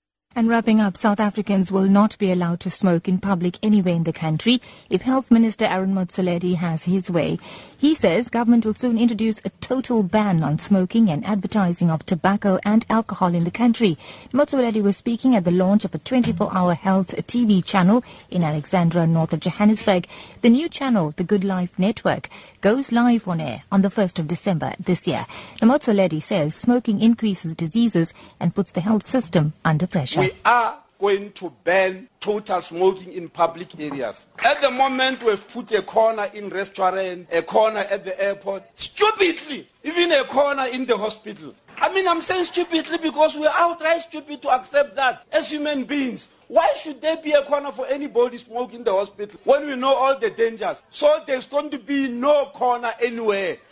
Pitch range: 185-260 Hz